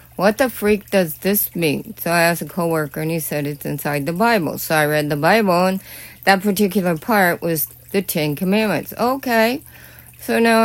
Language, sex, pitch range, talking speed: English, female, 160-205 Hz, 190 wpm